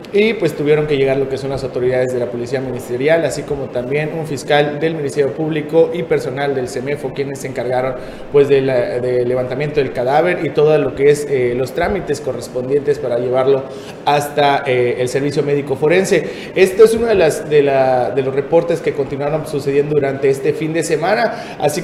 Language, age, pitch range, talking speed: Spanish, 30-49, 135-160 Hz, 185 wpm